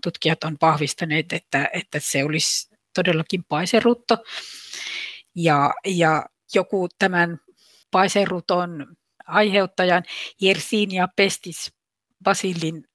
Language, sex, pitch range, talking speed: Finnish, female, 165-200 Hz, 90 wpm